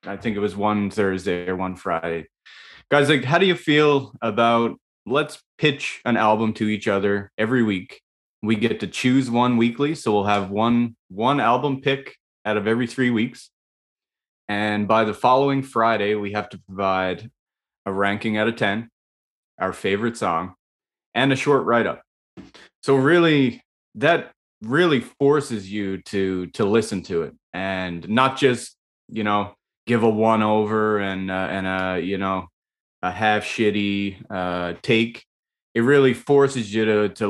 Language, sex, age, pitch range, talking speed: English, male, 20-39, 95-120 Hz, 165 wpm